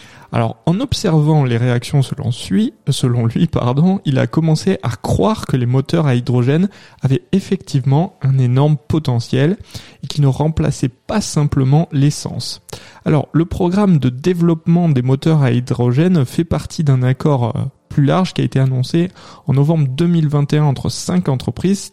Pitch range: 135-160 Hz